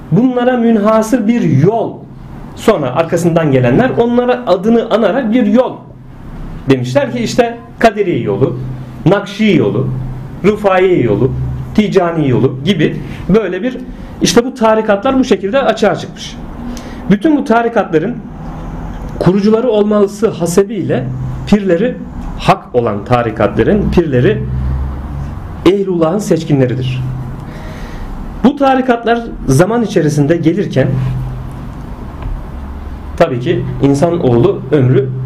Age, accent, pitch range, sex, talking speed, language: 40-59, native, 130-195 Hz, male, 95 wpm, Turkish